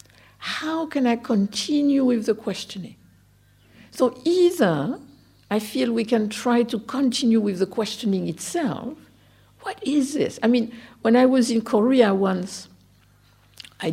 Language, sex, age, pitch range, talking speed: English, female, 60-79, 165-215 Hz, 140 wpm